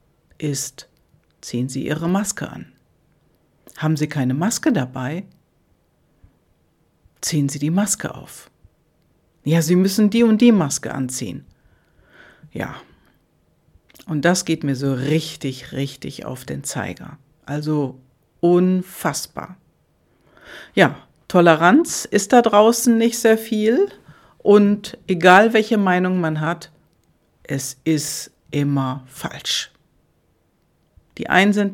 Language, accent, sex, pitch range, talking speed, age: German, German, female, 150-205 Hz, 110 wpm, 60-79